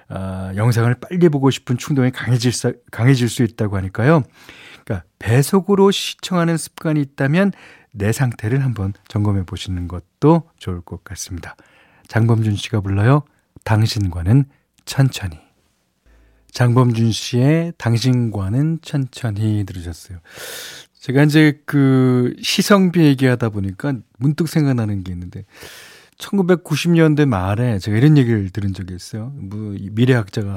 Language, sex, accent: Korean, male, native